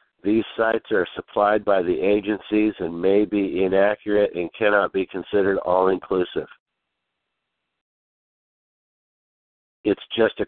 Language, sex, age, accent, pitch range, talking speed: English, male, 60-79, American, 95-110 Hz, 110 wpm